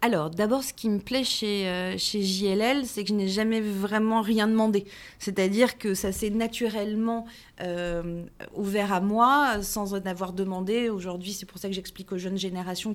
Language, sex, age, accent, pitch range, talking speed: French, female, 30-49, French, 195-235 Hz, 185 wpm